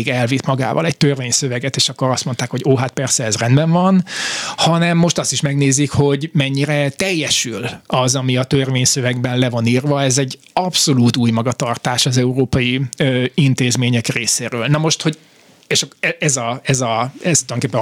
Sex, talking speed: male, 165 wpm